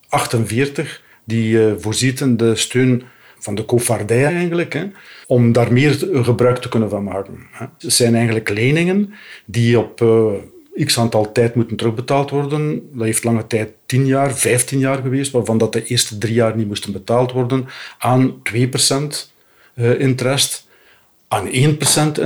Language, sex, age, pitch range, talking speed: Dutch, male, 50-69, 115-135 Hz, 145 wpm